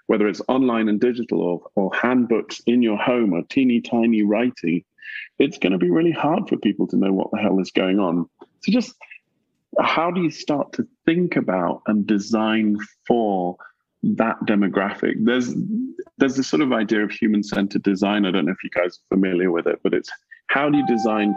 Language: English